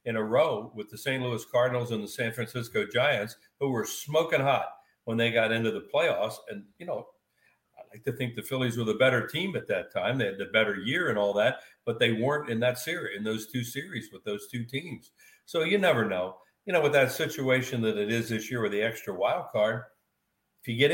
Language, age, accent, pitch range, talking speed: English, 60-79, American, 105-135 Hz, 240 wpm